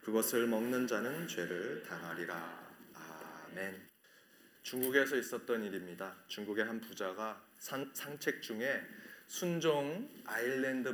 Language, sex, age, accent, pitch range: Korean, male, 30-49, native, 115-165 Hz